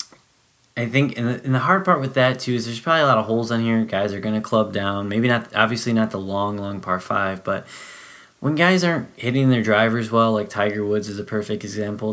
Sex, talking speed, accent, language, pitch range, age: male, 235 wpm, American, English, 105-130 Hz, 20-39